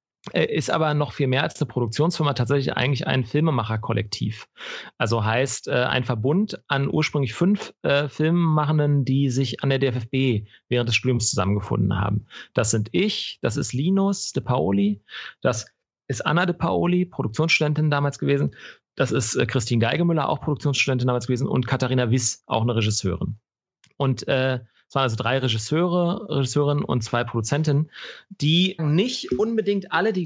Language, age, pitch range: German, 40-59, 120-160 Hz